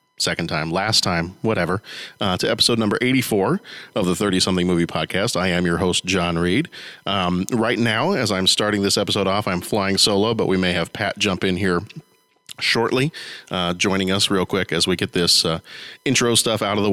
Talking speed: 200 wpm